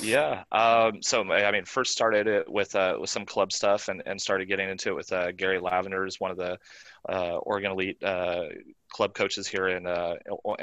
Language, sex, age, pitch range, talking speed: English, male, 20-39, 95-105 Hz, 210 wpm